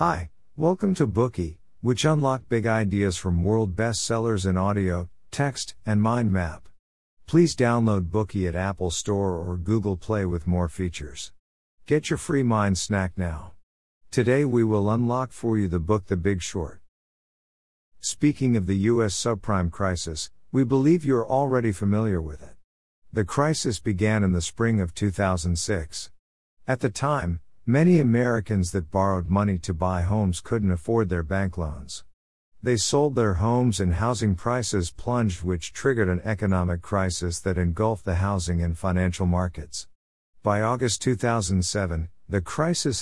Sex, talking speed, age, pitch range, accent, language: male, 150 wpm, 50-69, 90-115 Hz, American, English